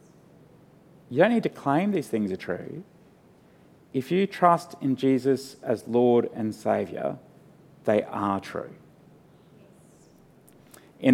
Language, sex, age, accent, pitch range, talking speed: English, male, 40-59, Australian, 110-160 Hz, 120 wpm